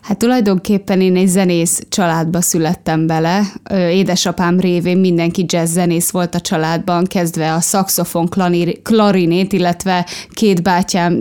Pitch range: 175-195 Hz